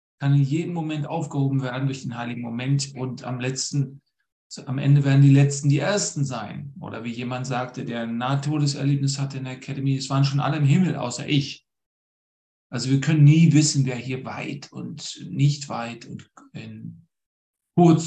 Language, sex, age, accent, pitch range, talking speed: German, male, 40-59, German, 125-145 Hz, 180 wpm